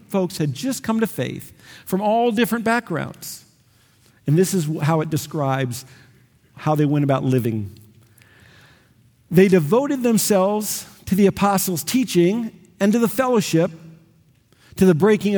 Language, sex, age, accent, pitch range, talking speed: English, male, 50-69, American, 135-200 Hz, 135 wpm